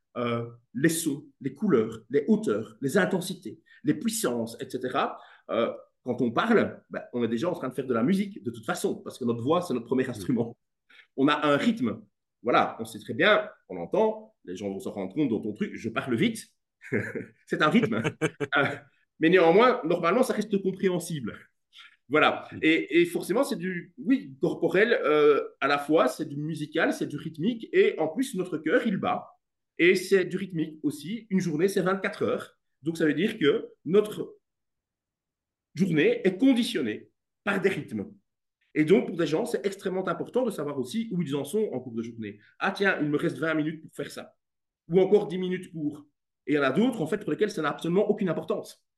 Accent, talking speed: French, 205 wpm